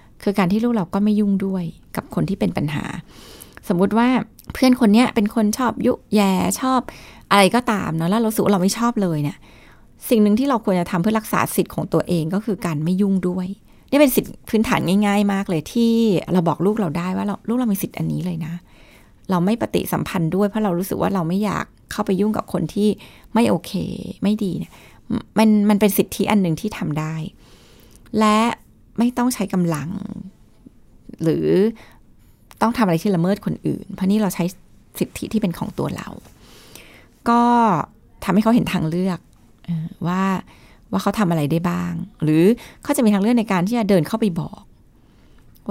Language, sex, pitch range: Thai, female, 170-215 Hz